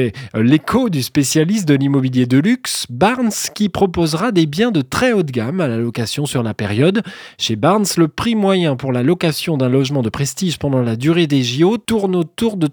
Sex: male